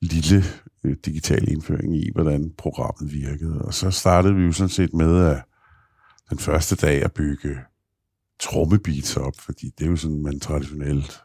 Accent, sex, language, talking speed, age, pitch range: native, male, Danish, 165 wpm, 60-79, 75-95 Hz